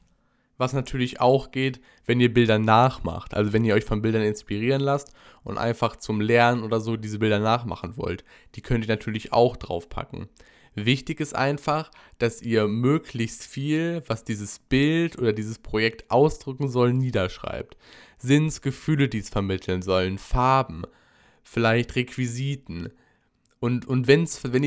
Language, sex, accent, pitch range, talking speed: German, male, German, 110-130 Hz, 150 wpm